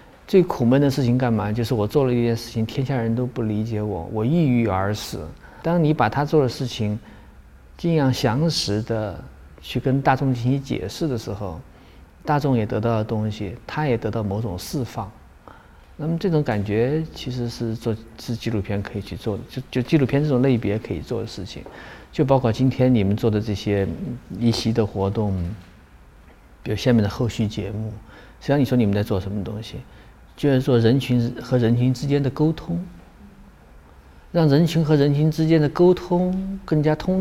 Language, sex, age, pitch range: Chinese, male, 50-69, 110-150 Hz